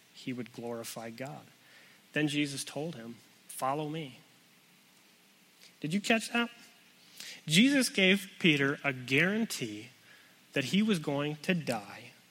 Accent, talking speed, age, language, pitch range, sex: American, 120 wpm, 30-49, English, 135-170 Hz, male